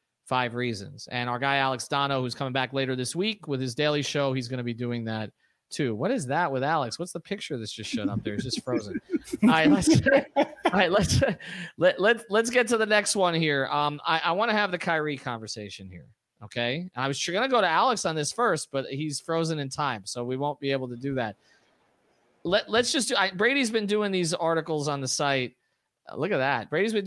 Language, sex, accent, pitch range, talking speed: English, male, American, 130-170 Hz, 235 wpm